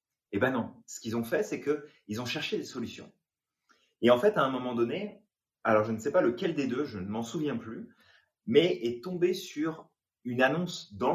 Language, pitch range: French, 110-165 Hz